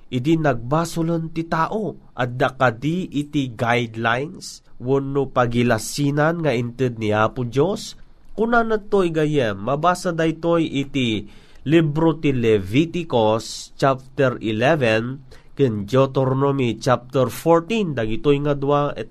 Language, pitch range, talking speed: Filipino, 130-170 Hz, 105 wpm